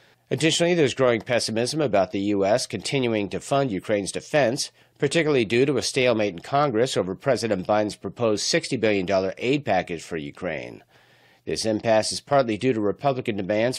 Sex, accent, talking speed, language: male, American, 160 wpm, English